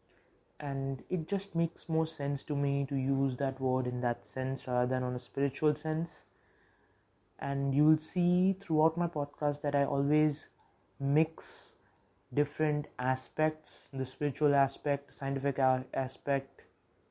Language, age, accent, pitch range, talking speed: English, 20-39, Indian, 125-145 Hz, 135 wpm